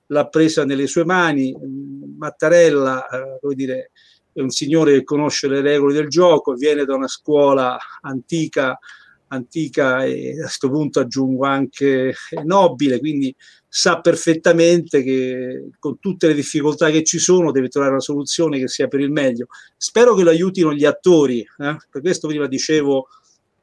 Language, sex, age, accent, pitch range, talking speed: Italian, male, 50-69, native, 135-160 Hz, 155 wpm